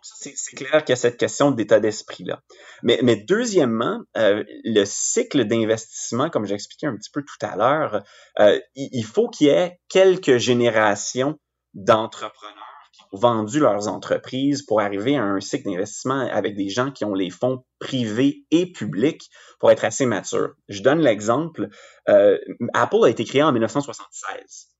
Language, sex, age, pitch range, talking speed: French, male, 30-49, 105-150 Hz, 160 wpm